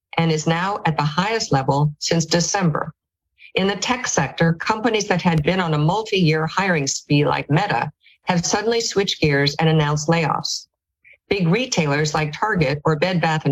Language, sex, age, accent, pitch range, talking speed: English, female, 50-69, American, 155-185 Hz, 170 wpm